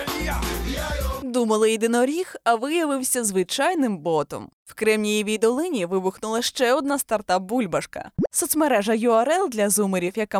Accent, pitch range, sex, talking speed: native, 195-265 Hz, female, 105 wpm